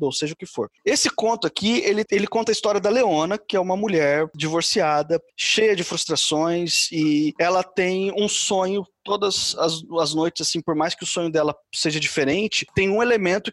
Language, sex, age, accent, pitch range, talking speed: Portuguese, male, 20-39, Brazilian, 170-210 Hz, 195 wpm